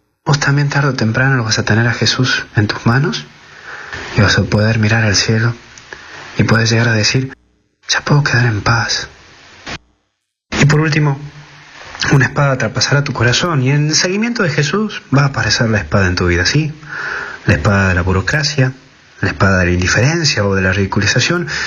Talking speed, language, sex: 185 wpm, Spanish, male